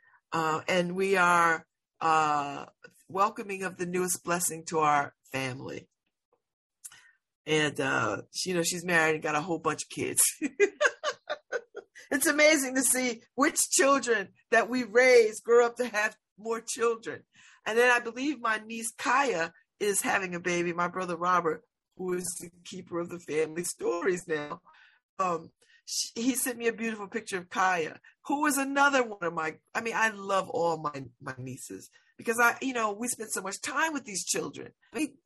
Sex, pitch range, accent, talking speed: female, 170-260 Hz, American, 170 wpm